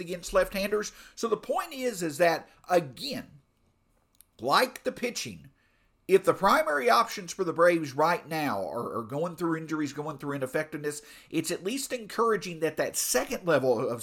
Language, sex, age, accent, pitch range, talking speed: English, male, 50-69, American, 145-200 Hz, 165 wpm